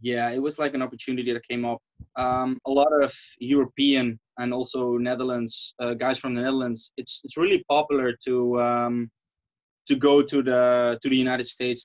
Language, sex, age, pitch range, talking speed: English, male, 20-39, 120-135 Hz, 180 wpm